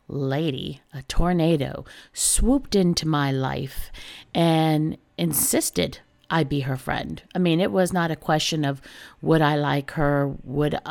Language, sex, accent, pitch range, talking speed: English, female, American, 145-180 Hz, 145 wpm